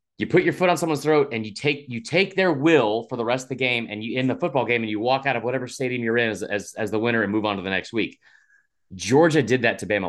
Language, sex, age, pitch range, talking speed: English, male, 30-49, 110-155 Hz, 310 wpm